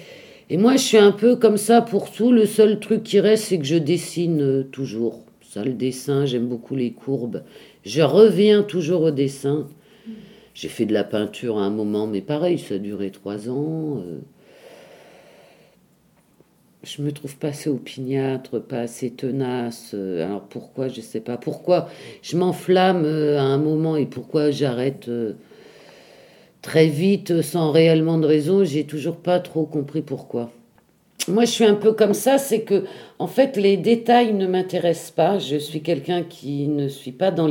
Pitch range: 135-195 Hz